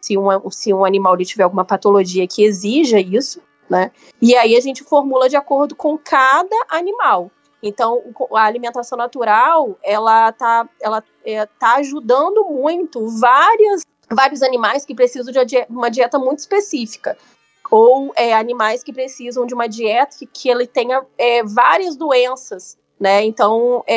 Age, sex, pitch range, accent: 20-39, female, 200-265 Hz, Brazilian